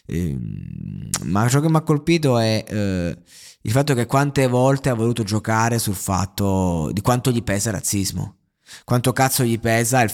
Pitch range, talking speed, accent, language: 105-130 Hz, 170 wpm, native, Italian